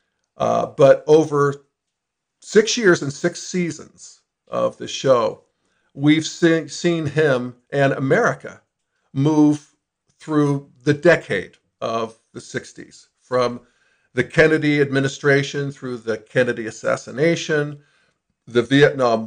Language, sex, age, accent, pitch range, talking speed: English, male, 50-69, American, 125-155 Hz, 105 wpm